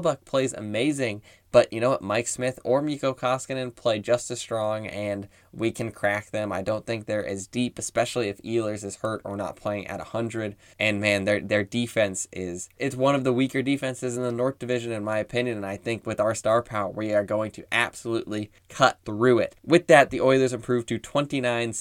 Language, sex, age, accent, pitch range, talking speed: English, male, 10-29, American, 105-125 Hz, 215 wpm